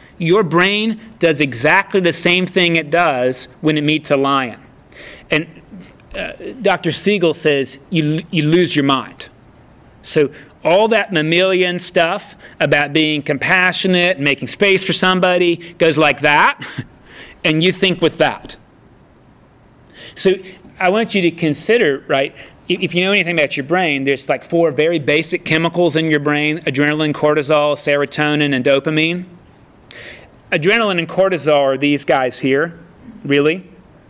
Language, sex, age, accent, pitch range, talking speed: English, male, 30-49, American, 145-180 Hz, 145 wpm